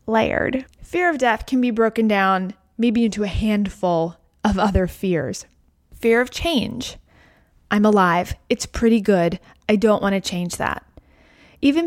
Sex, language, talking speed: female, English, 145 wpm